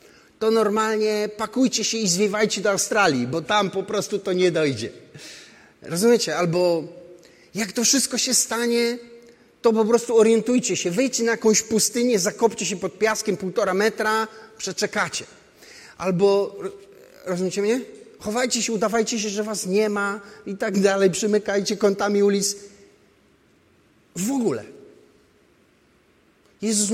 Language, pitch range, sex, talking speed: Polish, 195-240 Hz, male, 130 wpm